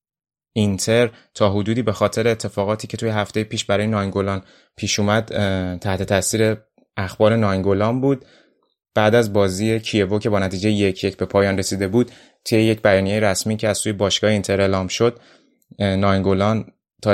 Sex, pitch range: male, 100-110 Hz